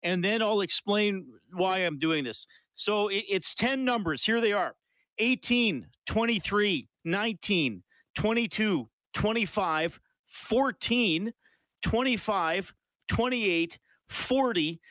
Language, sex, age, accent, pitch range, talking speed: English, male, 40-59, American, 150-210 Hz, 95 wpm